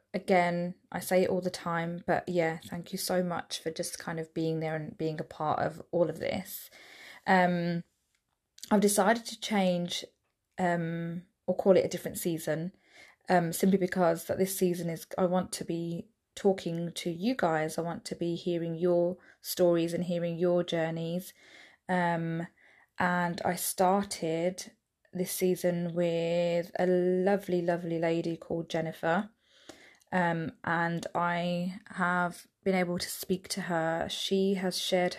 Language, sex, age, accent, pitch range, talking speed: English, female, 20-39, British, 170-185 Hz, 155 wpm